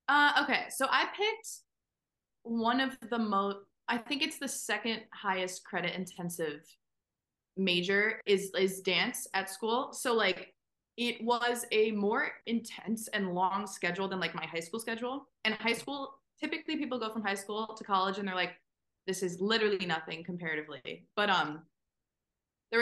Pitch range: 180-230 Hz